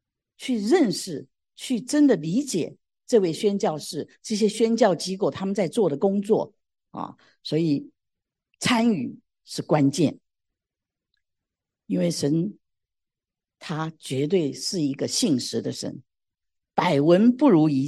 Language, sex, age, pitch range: Chinese, female, 50-69, 155-235 Hz